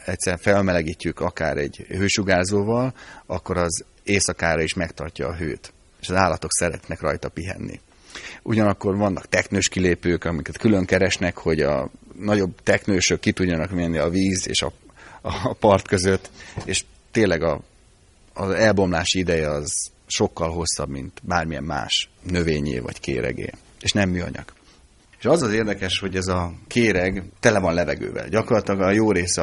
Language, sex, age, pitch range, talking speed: Hungarian, male, 30-49, 85-100 Hz, 145 wpm